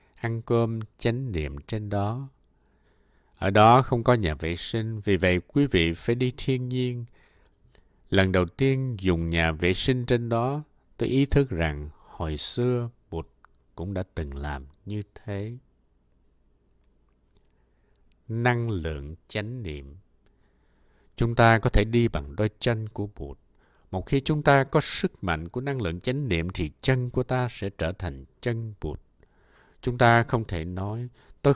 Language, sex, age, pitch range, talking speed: Vietnamese, male, 60-79, 80-125 Hz, 160 wpm